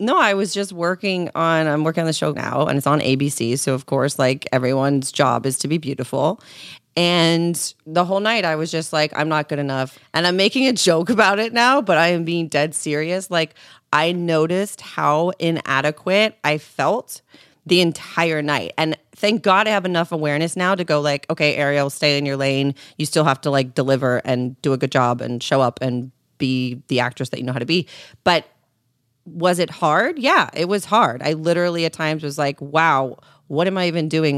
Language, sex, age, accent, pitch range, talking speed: English, female, 30-49, American, 140-180 Hz, 215 wpm